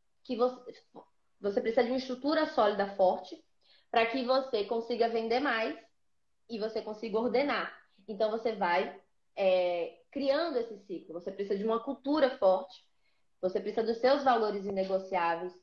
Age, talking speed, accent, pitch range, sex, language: 20-39, 140 wpm, Brazilian, 195-260 Hz, female, Portuguese